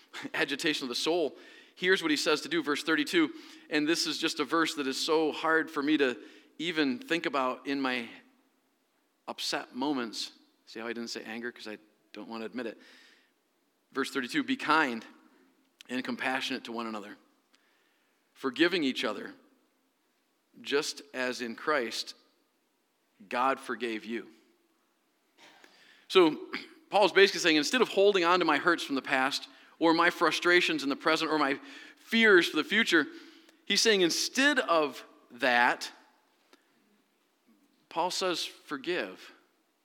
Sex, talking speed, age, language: male, 150 wpm, 40-59, English